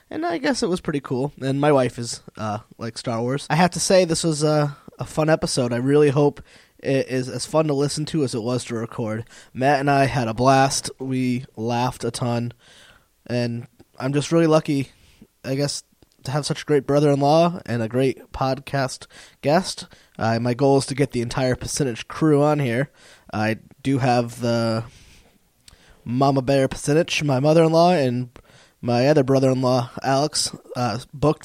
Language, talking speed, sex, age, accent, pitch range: English, 185 wpm, male, 20-39, American, 125-155 Hz